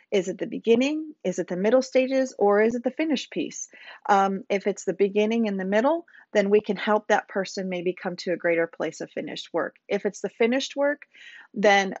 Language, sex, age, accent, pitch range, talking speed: English, female, 40-59, American, 185-230 Hz, 220 wpm